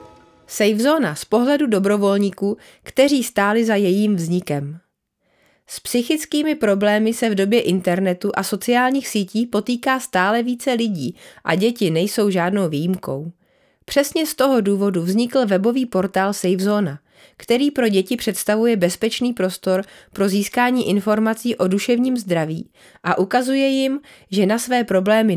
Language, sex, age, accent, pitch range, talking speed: Czech, female, 30-49, native, 180-235 Hz, 130 wpm